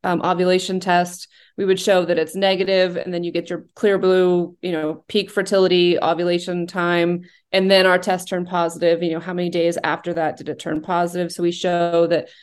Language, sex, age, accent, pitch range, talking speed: English, female, 20-39, American, 165-190 Hz, 210 wpm